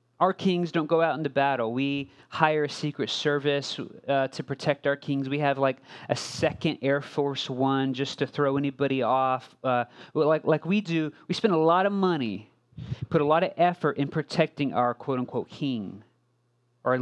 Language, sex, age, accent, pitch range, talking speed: English, male, 30-49, American, 120-170 Hz, 185 wpm